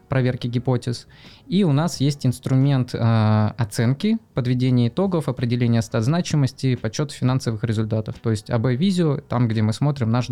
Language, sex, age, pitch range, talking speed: Russian, male, 20-39, 115-135 Hz, 140 wpm